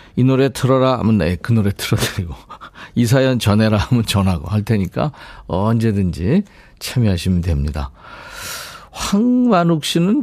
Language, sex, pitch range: Korean, male, 100-140 Hz